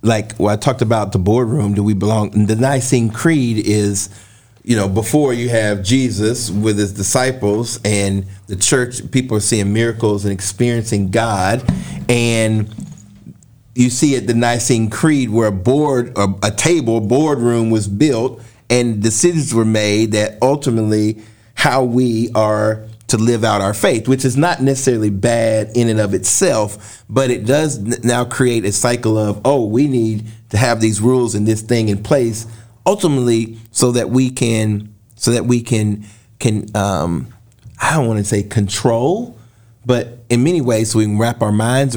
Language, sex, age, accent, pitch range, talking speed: English, male, 40-59, American, 110-130 Hz, 170 wpm